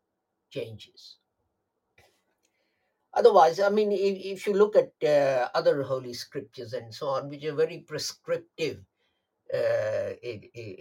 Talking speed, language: 115 wpm, English